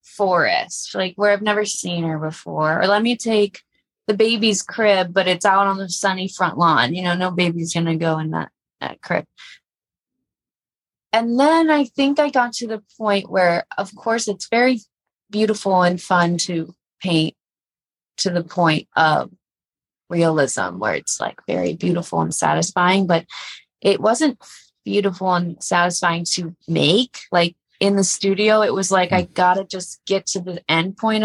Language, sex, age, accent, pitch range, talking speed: English, female, 20-39, American, 175-215 Hz, 170 wpm